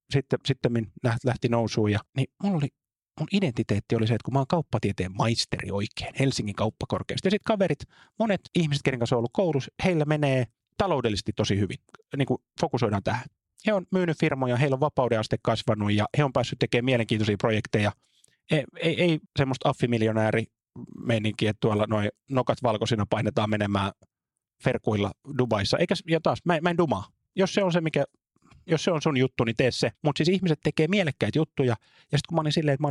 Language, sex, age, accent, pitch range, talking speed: Finnish, male, 30-49, native, 115-155 Hz, 180 wpm